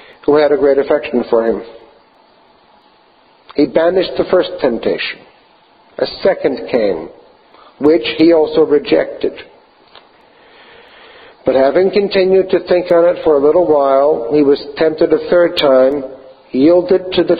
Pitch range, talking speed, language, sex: 150-190 Hz, 135 wpm, English, male